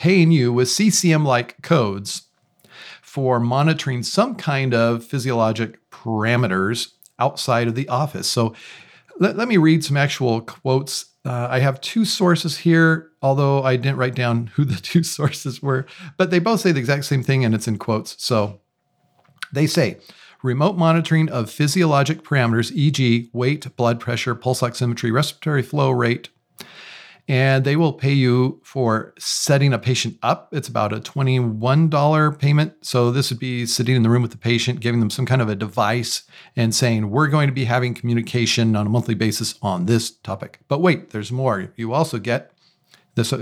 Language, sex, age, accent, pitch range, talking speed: English, male, 40-59, American, 120-150 Hz, 175 wpm